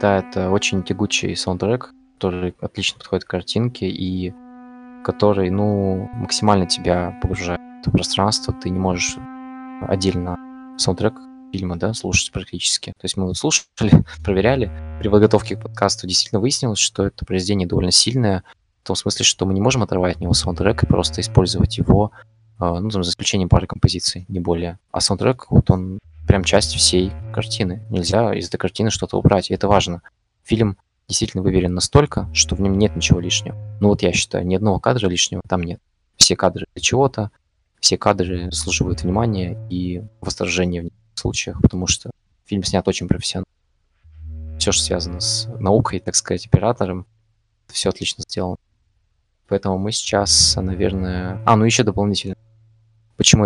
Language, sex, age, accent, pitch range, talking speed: Russian, male, 20-39, native, 90-110 Hz, 160 wpm